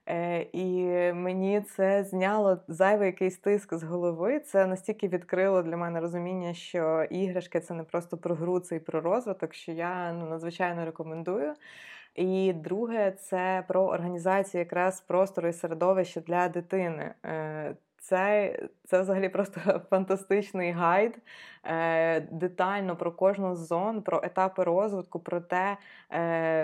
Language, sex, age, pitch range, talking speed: Ukrainian, female, 20-39, 175-195 Hz, 130 wpm